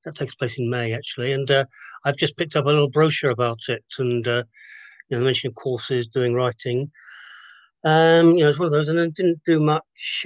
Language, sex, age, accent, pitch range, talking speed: English, male, 40-59, British, 130-155 Hz, 230 wpm